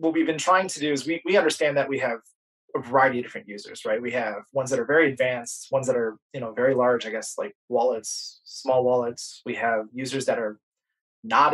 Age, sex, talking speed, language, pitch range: 20-39, male, 235 wpm, English, 125-160 Hz